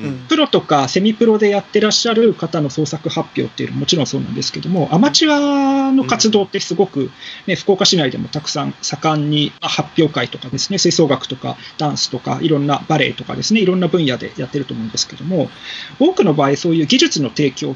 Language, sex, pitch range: Japanese, male, 140-215 Hz